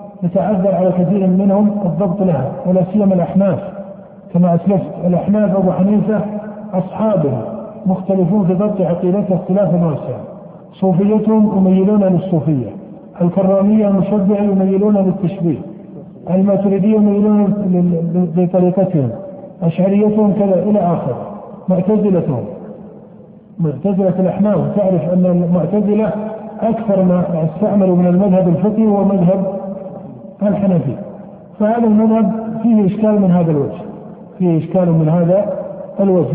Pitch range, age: 180-205 Hz, 50-69